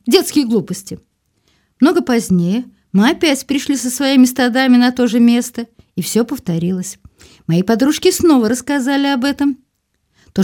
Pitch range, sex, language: 200-265 Hz, female, Russian